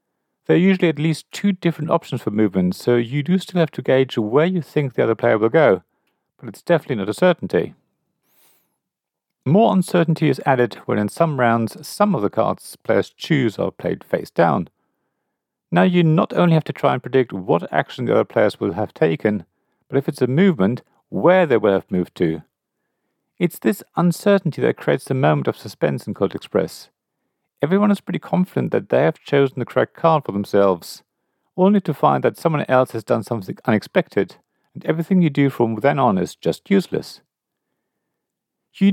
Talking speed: 190 wpm